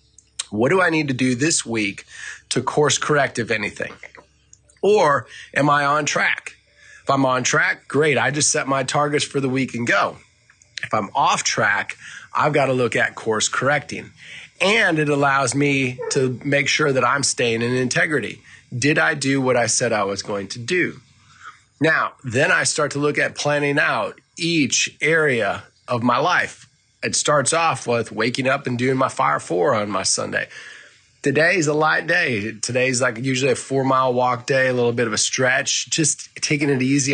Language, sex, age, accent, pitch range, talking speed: English, male, 30-49, American, 120-145 Hz, 190 wpm